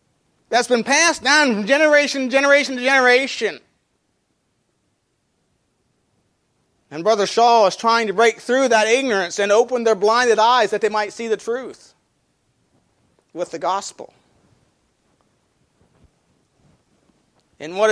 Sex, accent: male, American